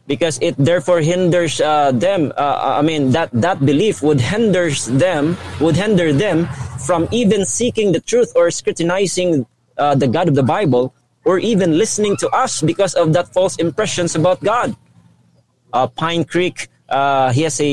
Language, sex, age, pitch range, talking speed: English, male, 20-39, 130-175 Hz, 170 wpm